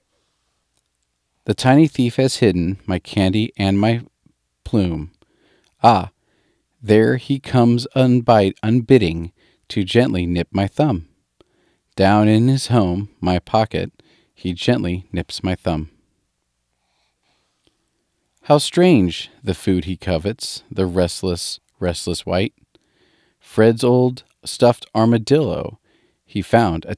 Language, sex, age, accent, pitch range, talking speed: English, male, 40-59, American, 90-120 Hz, 110 wpm